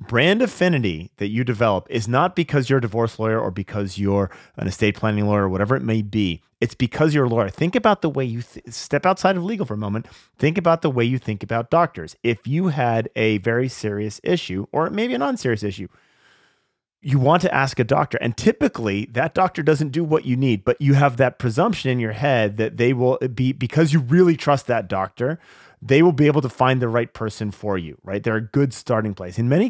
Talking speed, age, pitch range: 230 wpm, 30-49, 105-140 Hz